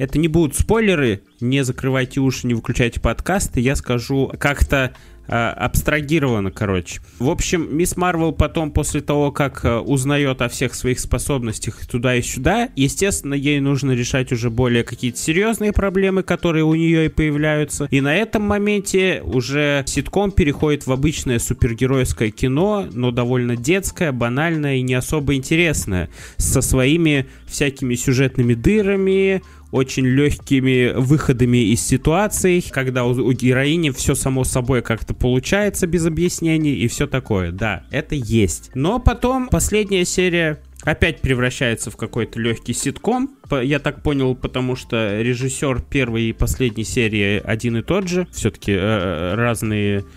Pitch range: 120-155 Hz